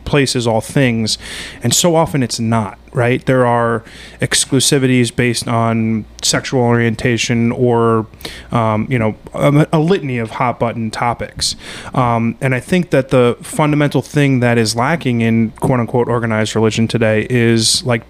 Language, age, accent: English, 20-39, American